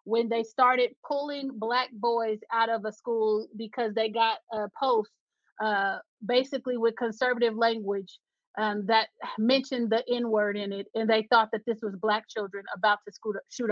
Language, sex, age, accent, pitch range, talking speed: English, female, 30-49, American, 215-245 Hz, 165 wpm